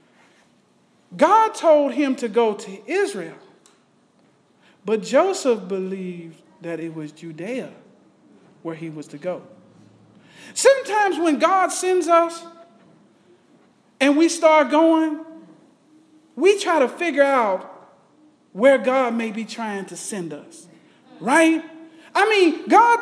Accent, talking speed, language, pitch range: American, 115 wpm, English, 275-335 Hz